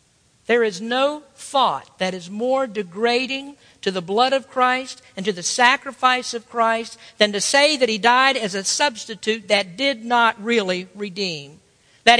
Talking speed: 165 wpm